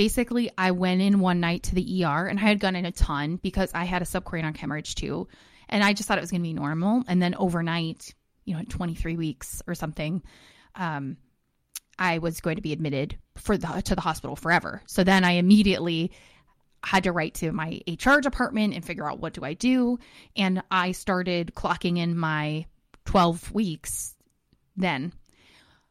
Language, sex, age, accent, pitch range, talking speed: English, female, 20-39, American, 170-205 Hz, 190 wpm